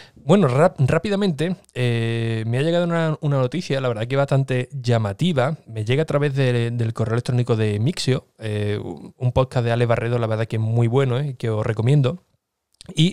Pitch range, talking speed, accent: 115-145 Hz, 190 wpm, Spanish